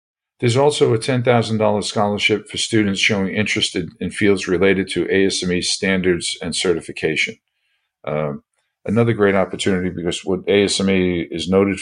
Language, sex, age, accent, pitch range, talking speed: English, male, 50-69, American, 85-105 Hz, 135 wpm